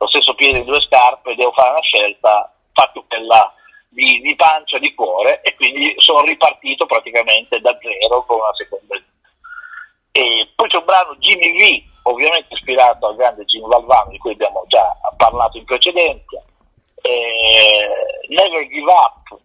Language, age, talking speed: Italian, 50-69, 160 wpm